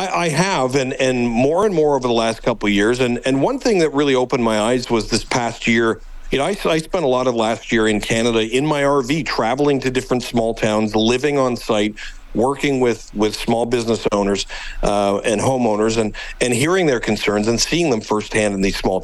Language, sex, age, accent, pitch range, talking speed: English, male, 50-69, American, 110-135 Hz, 215 wpm